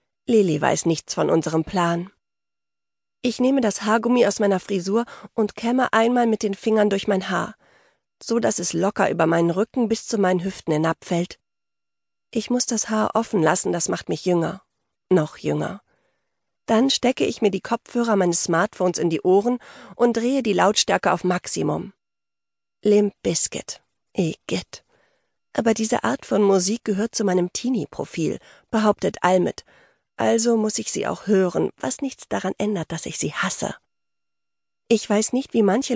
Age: 40-59